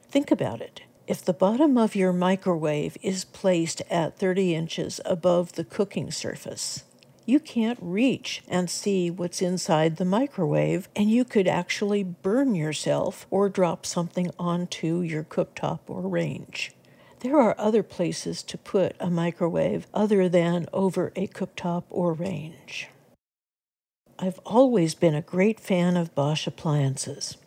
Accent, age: American, 60-79